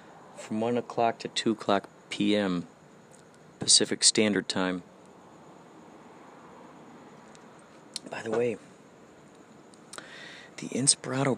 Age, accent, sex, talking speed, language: 40-59, American, male, 80 wpm, English